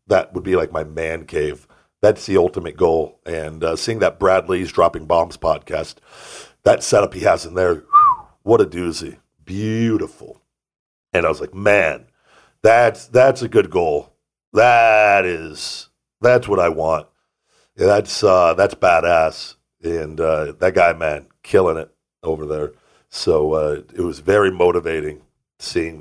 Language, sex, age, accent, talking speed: English, male, 50-69, American, 155 wpm